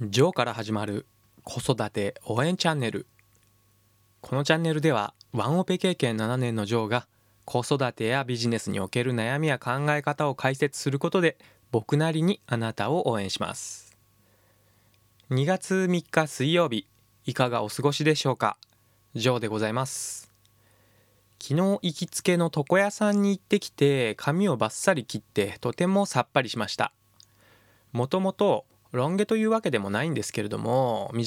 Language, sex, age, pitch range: Japanese, male, 20-39, 110-155 Hz